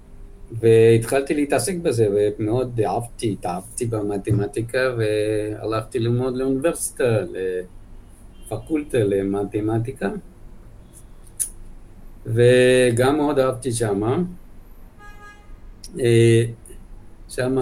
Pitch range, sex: 105-125 Hz, male